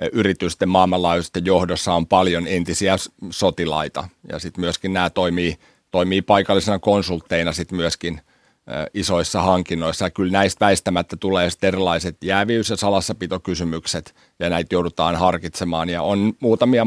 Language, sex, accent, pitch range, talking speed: Finnish, male, native, 90-100 Hz, 125 wpm